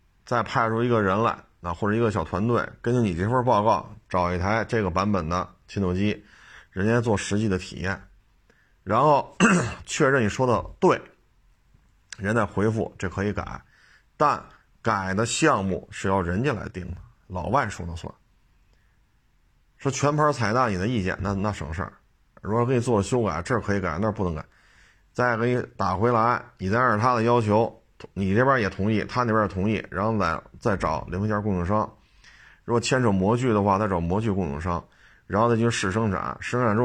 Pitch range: 95-115 Hz